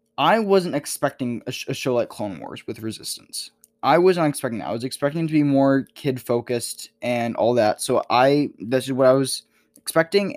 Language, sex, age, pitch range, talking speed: English, male, 10-29, 120-155 Hz, 205 wpm